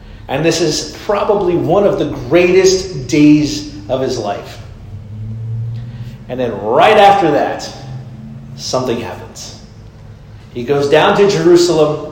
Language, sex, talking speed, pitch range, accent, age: English, male, 120 wpm, 125-180 Hz, American, 40-59